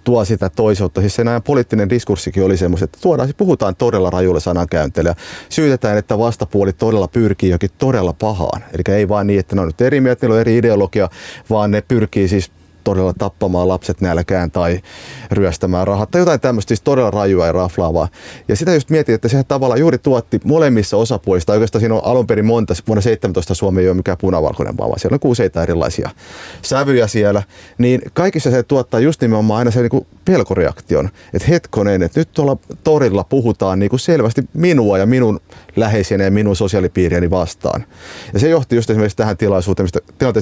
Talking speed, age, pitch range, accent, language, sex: 180 wpm, 30-49, 95-120 Hz, native, Finnish, male